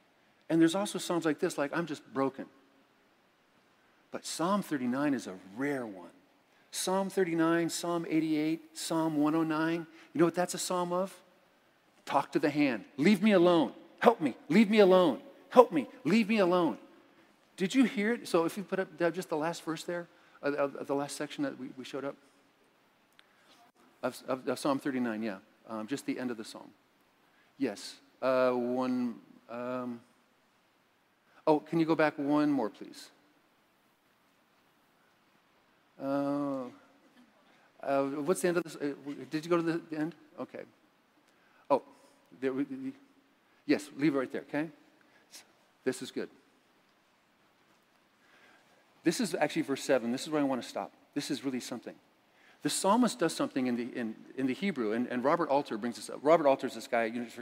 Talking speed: 170 wpm